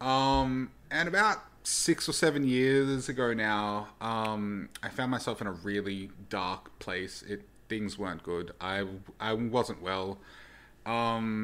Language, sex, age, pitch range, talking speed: English, male, 30-49, 100-115 Hz, 140 wpm